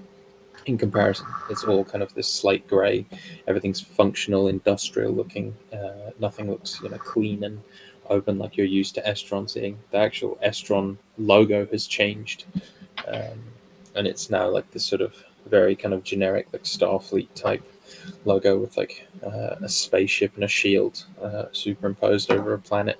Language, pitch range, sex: English, 100-110 Hz, male